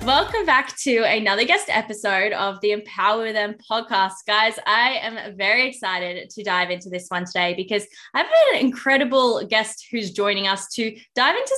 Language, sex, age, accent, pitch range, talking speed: English, female, 10-29, Australian, 195-255 Hz, 175 wpm